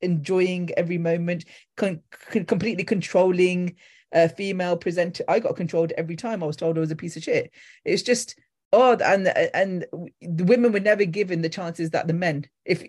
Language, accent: English, British